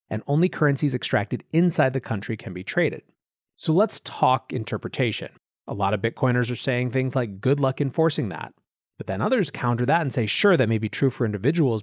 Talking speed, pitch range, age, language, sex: 205 wpm, 110-150 Hz, 30-49, English, male